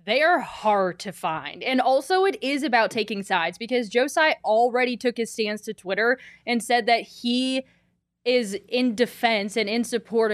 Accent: American